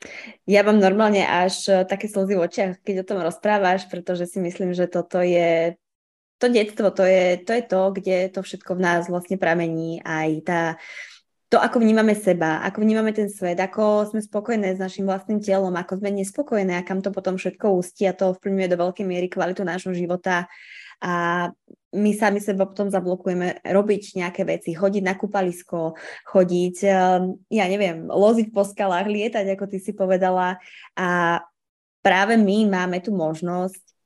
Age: 20-39